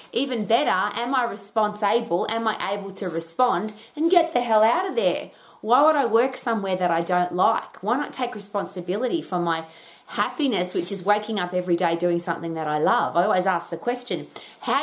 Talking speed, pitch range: 200 wpm, 170-230 Hz